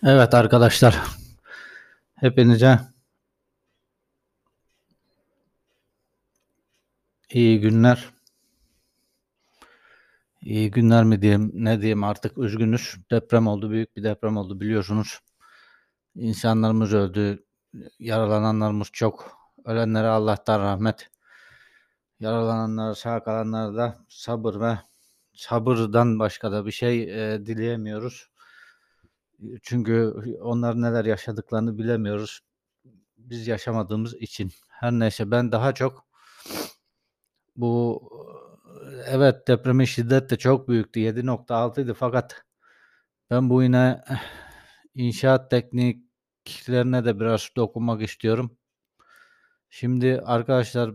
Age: 60-79